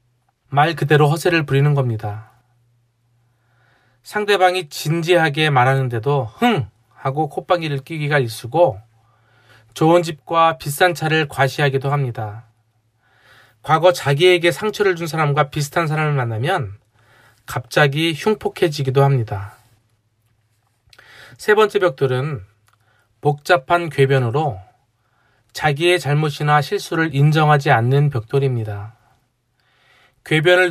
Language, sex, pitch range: Korean, male, 120-160 Hz